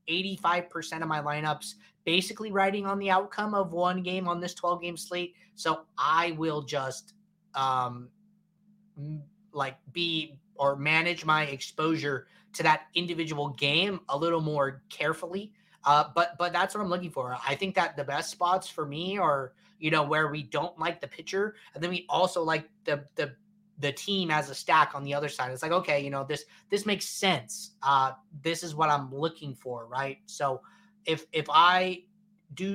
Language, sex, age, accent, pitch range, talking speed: English, male, 20-39, American, 145-185 Hz, 185 wpm